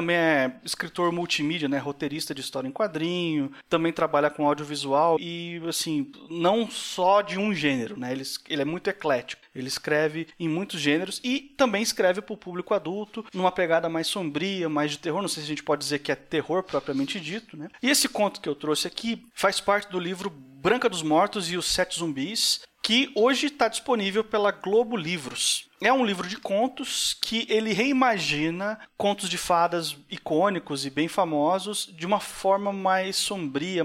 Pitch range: 160-210 Hz